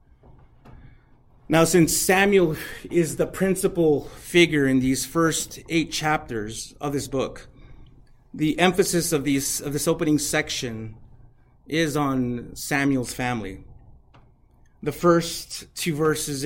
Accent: American